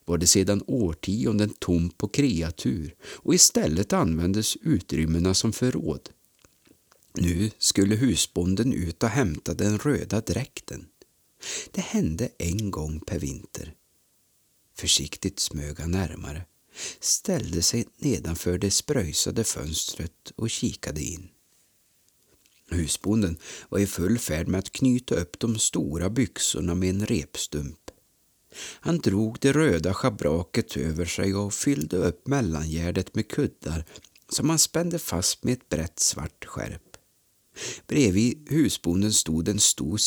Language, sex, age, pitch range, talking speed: Swedish, male, 50-69, 85-115 Hz, 125 wpm